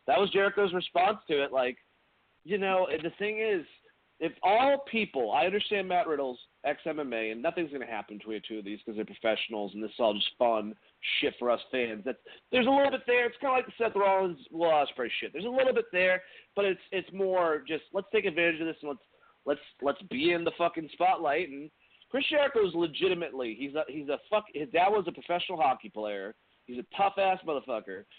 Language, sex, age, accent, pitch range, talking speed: English, male, 40-59, American, 140-210 Hz, 220 wpm